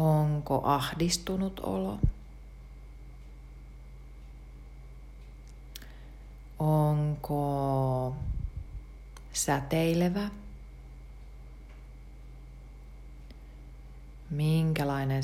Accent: native